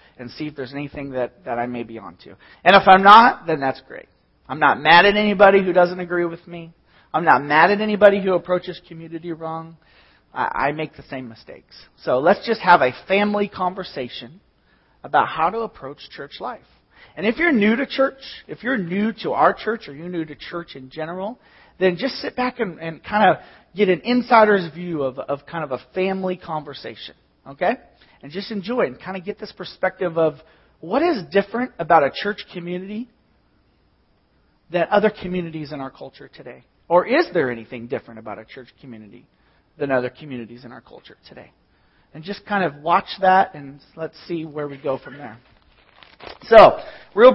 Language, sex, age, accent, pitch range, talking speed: English, male, 40-59, American, 150-205 Hz, 195 wpm